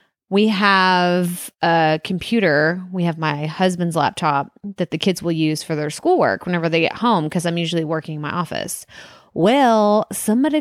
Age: 20-39